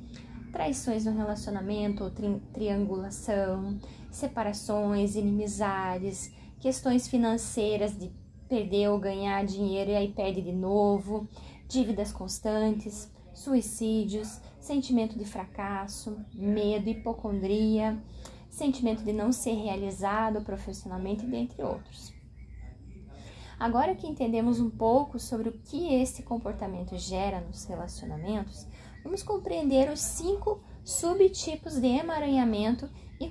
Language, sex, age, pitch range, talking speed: Portuguese, female, 10-29, 205-260 Hz, 105 wpm